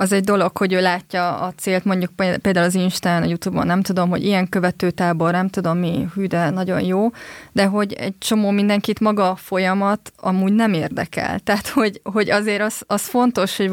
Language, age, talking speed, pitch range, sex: Hungarian, 20-39, 195 wpm, 190-230 Hz, female